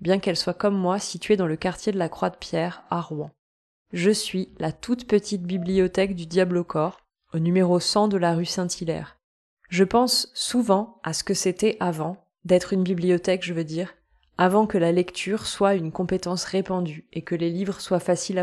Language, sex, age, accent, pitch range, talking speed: French, female, 20-39, French, 165-190 Hz, 200 wpm